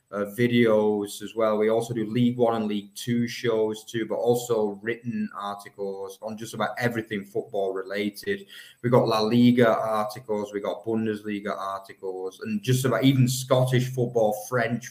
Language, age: English, 20-39